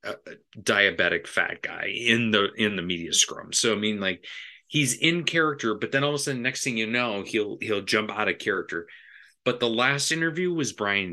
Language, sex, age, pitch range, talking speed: English, male, 30-49, 95-120 Hz, 210 wpm